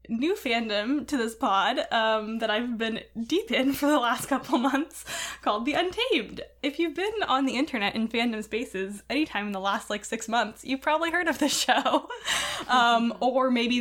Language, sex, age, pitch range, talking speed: English, female, 10-29, 210-270 Hz, 190 wpm